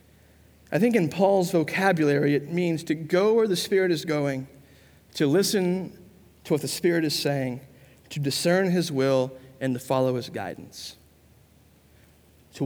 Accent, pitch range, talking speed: American, 135-200 Hz, 150 wpm